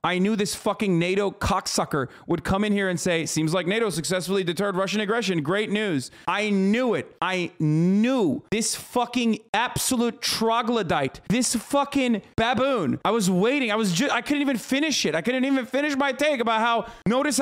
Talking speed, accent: 185 wpm, American